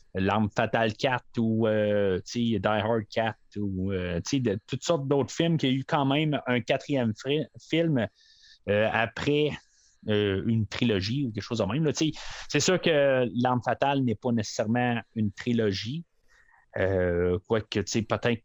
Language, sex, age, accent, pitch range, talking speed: French, male, 30-49, Canadian, 110-145 Hz, 145 wpm